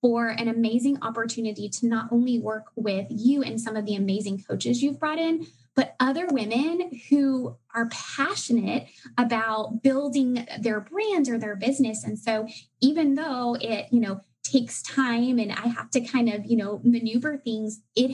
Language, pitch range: English, 225-280 Hz